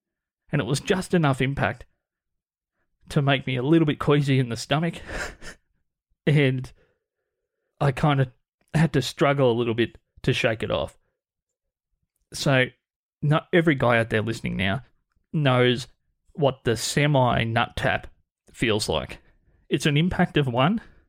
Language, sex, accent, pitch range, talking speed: English, male, Australian, 120-145 Hz, 140 wpm